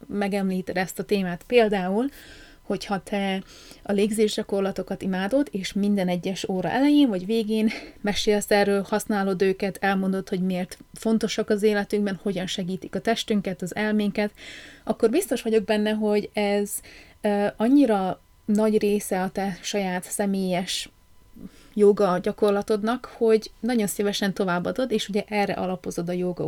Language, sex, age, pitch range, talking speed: Hungarian, female, 30-49, 190-220 Hz, 130 wpm